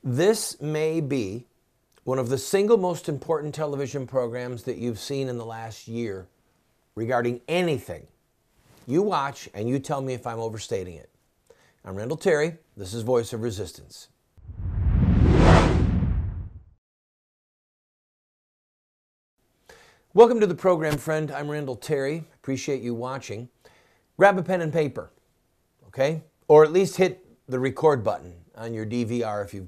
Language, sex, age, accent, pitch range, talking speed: English, male, 50-69, American, 115-160 Hz, 135 wpm